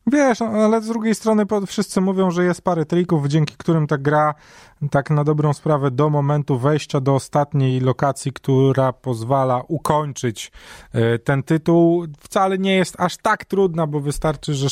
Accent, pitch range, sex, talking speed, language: native, 130-180 Hz, male, 160 wpm, Polish